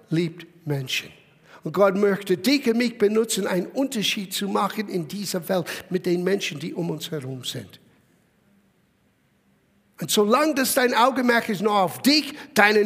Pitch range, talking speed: 195-285 Hz, 160 wpm